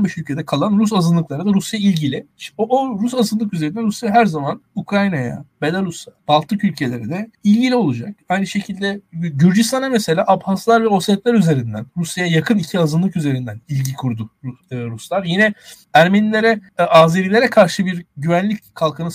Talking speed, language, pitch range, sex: 145 wpm, Turkish, 155-220 Hz, male